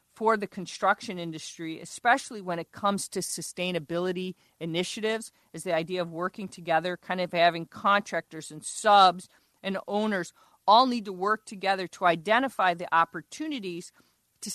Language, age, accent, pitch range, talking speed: English, 50-69, American, 170-215 Hz, 145 wpm